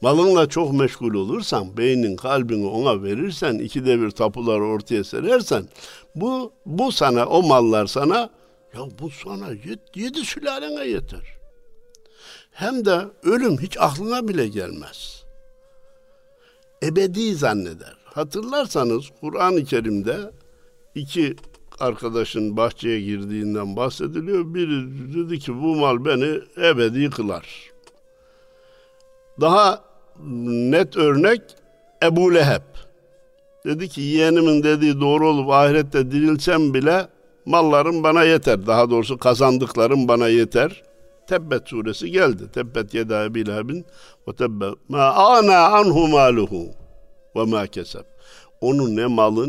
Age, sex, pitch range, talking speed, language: 60-79, male, 110-185 Hz, 110 wpm, Turkish